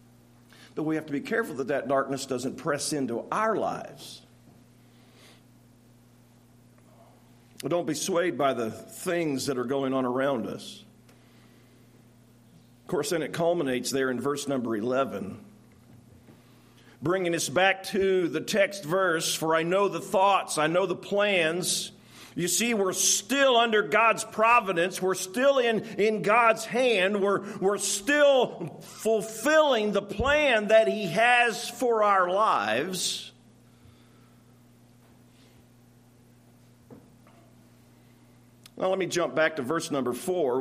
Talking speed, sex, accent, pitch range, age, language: 130 wpm, male, American, 120-190 Hz, 50-69, English